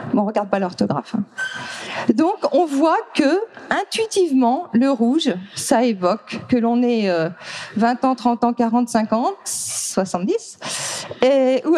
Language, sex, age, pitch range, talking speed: French, female, 40-59, 215-305 Hz, 140 wpm